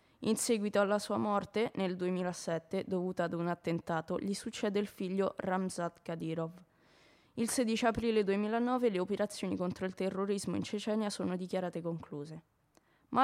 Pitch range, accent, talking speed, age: 180-215 Hz, native, 145 wpm, 20-39